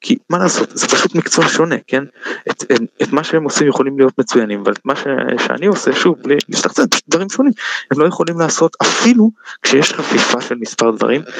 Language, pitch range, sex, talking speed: Hebrew, 115-195 Hz, male, 200 wpm